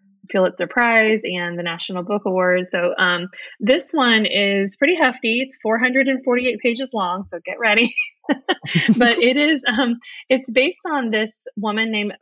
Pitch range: 180-230 Hz